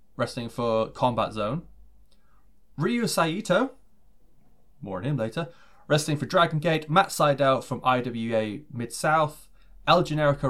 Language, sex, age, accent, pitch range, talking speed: English, male, 20-39, British, 115-165 Hz, 120 wpm